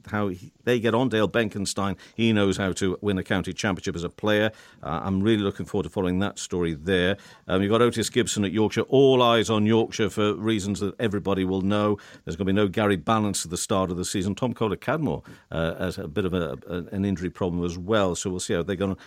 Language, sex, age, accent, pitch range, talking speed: English, male, 50-69, British, 95-115 Hz, 255 wpm